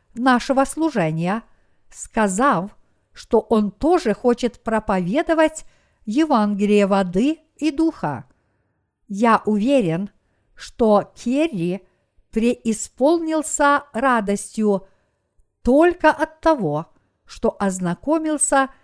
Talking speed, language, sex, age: 75 wpm, Russian, female, 50-69